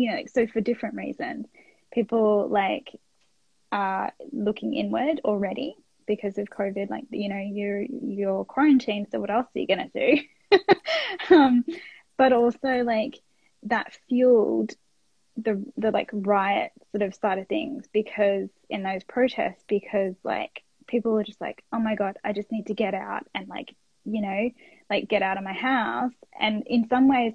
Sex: female